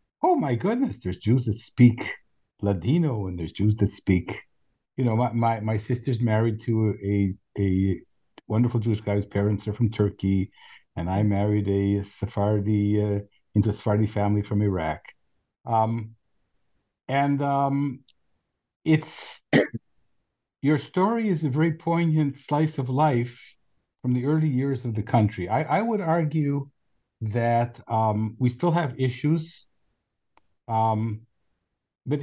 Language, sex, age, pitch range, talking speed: English, male, 50-69, 105-140 Hz, 140 wpm